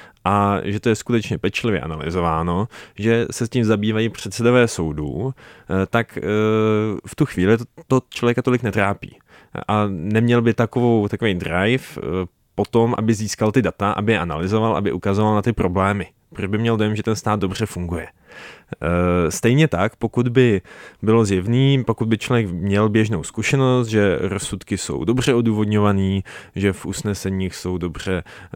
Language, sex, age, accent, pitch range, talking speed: Czech, male, 20-39, native, 95-125 Hz, 155 wpm